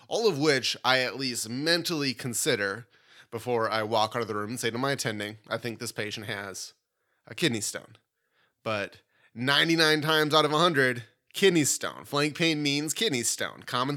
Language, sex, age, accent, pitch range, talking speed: English, male, 20-39, American, 115-145 Hz, 180 wpm